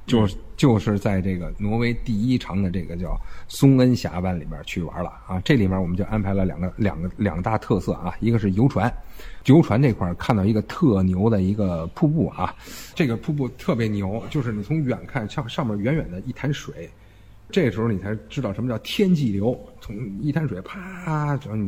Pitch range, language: 95-120 Hz, Chinese